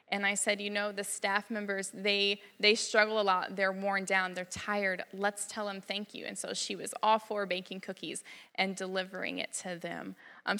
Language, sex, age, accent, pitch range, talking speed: English, female, 20-39, American, 190-230 Hz, 210 wpm